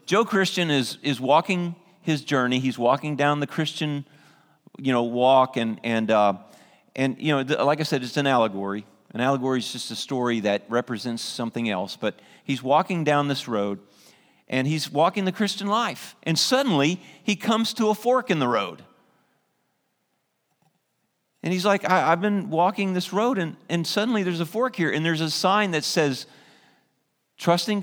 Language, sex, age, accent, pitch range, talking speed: English, male, 40-59, American, 155-215 Hz, 180 wpm